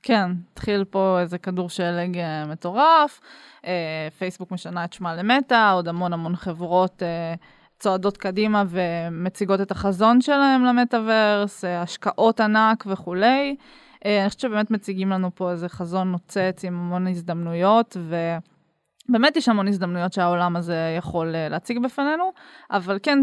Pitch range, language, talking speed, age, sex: 180-220 Hz, Hebrew, 125 wpm, 20-39, female